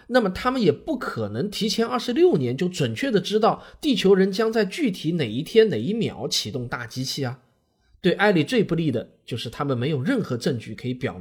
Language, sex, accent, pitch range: Chinese, male, native, 120-190 Hz